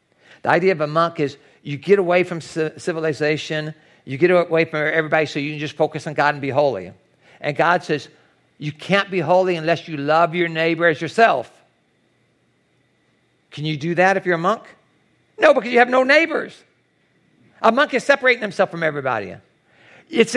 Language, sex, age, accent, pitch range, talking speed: English, male, 50-69, American, 150-200 Hz, 185 wpm